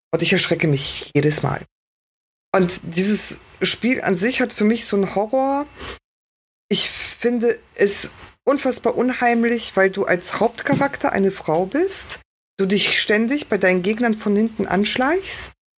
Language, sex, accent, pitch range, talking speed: German, female, German, 165-215 Hz, 140 wpm